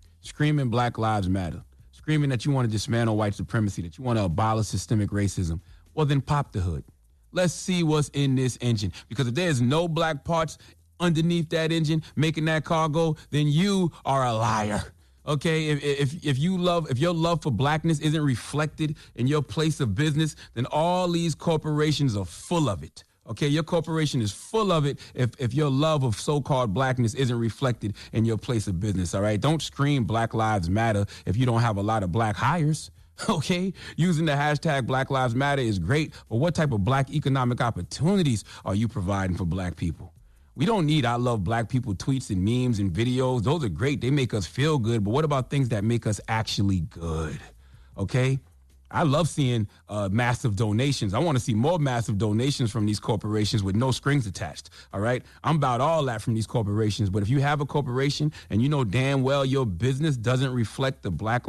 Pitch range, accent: 105-150 Hz, American